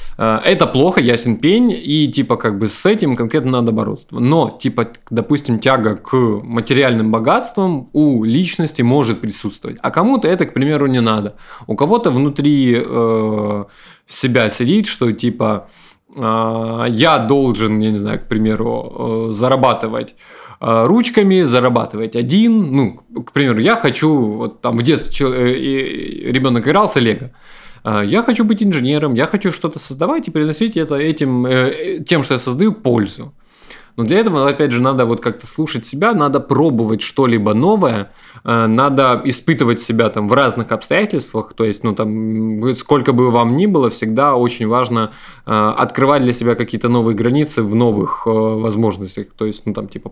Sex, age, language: male, 20-39, Russian